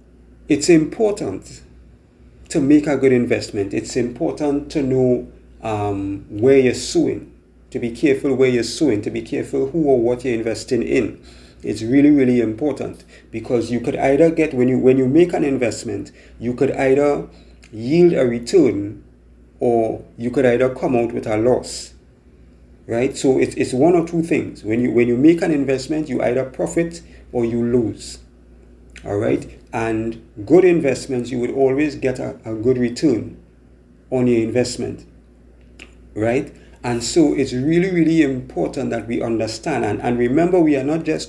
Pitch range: 100-135 Hz